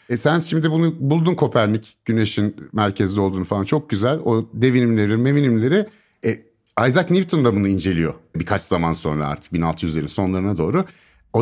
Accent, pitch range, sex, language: native, 110-165 Hz, male, Turkish